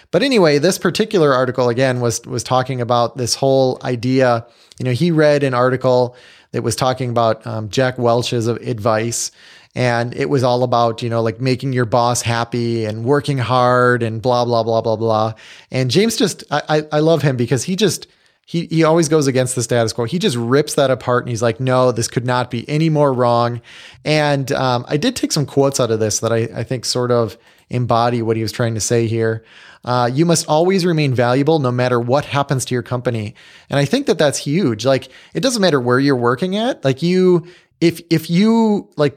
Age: 30-49